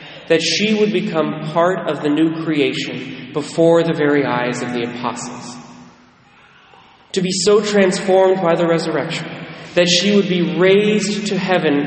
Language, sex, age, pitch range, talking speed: English, male, 30-49, 145-180 Hz, 150 wpm